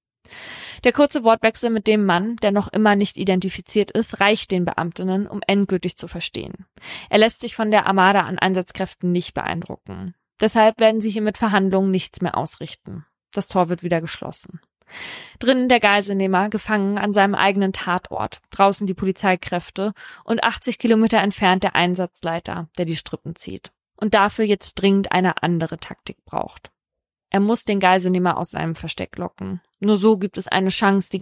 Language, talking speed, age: German, 165 wpm, 20-39